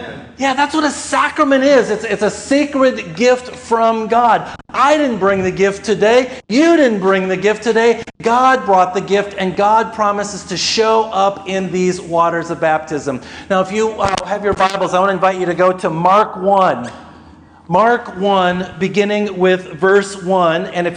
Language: English